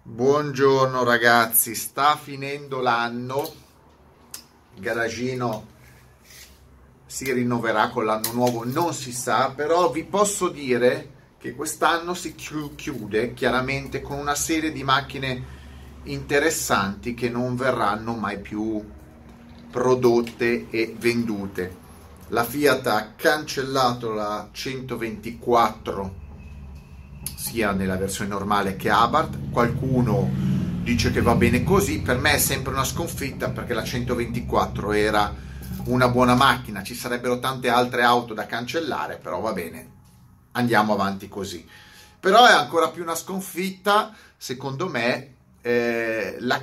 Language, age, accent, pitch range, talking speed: Italian, 30-49, native, 100-135 Hz, 115 wpm